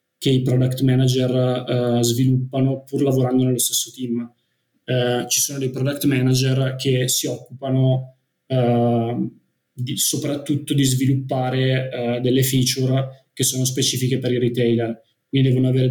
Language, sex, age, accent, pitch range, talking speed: Italian, male, 20-39, native, 125-135 Hz, 140 wpm